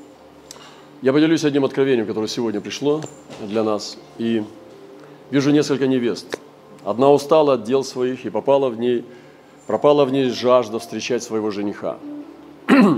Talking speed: 125 wpm